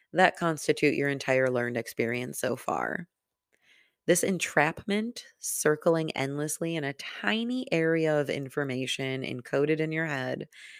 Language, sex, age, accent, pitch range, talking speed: English, female, 20-39, American, 130-165 Hz, 120 wpm